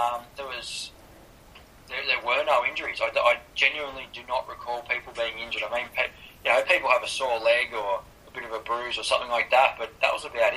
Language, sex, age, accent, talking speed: English, male, 20-39, Australian, 235 wpm